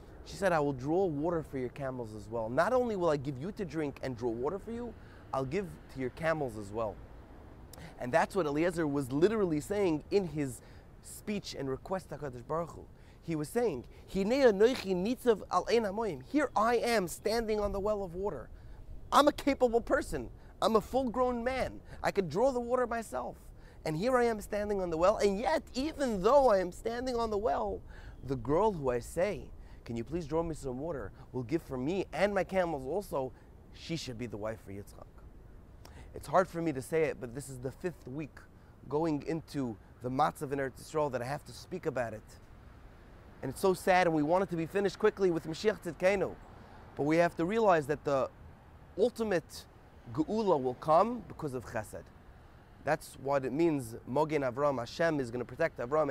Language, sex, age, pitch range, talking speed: English, male, 30-49, 120-195 Hz, 195 wpm